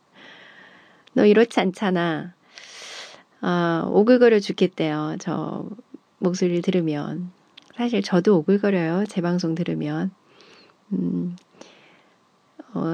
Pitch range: 175-240 Hz